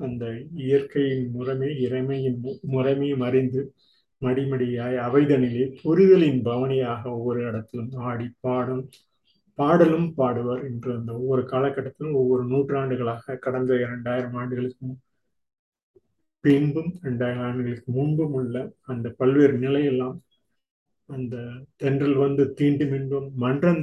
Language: Tamil